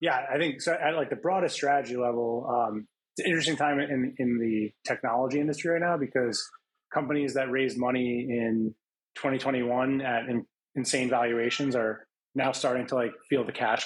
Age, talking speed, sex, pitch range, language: 20-39, 180 wpm, male, 115-140 Hz, English